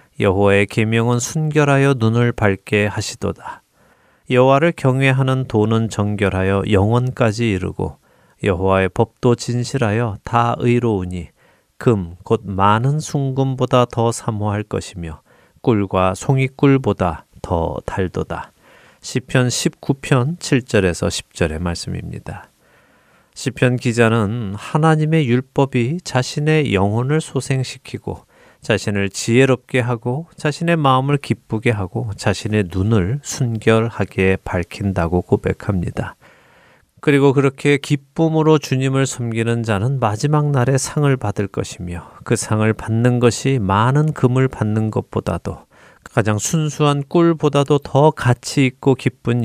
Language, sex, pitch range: Korean, male, 100-135 Hz